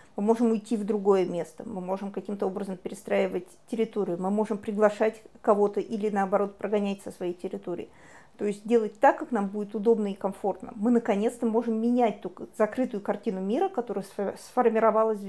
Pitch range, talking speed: 205-255 Hz, 165 wpm